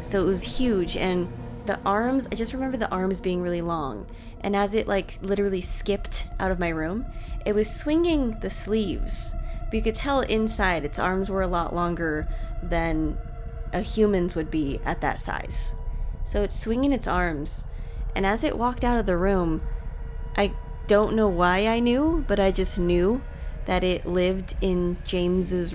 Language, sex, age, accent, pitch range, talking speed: English, female, 20-39, American, 160-210 Hz, 180 wpm